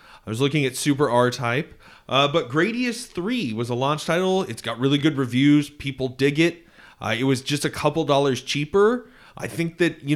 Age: 30-49